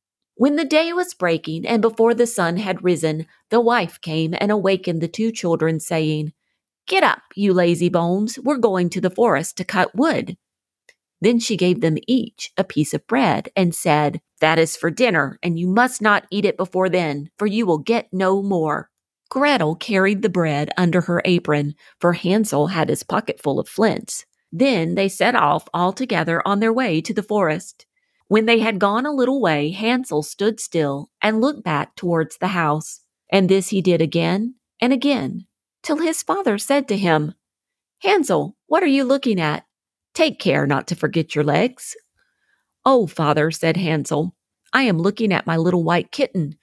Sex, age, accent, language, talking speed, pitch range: female, 40-59, American, English, 185 wpm, 165-230 Hz